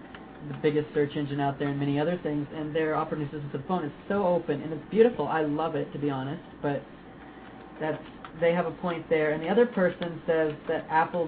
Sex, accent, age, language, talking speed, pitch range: male, American, 40-59, English, 230 wpm, 145-165 Hz